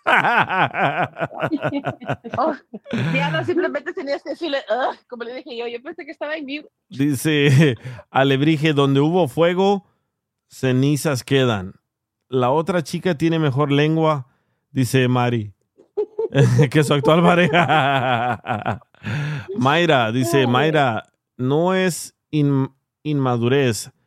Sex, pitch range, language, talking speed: male, 125-155 Hz, Spanish, 65 wpm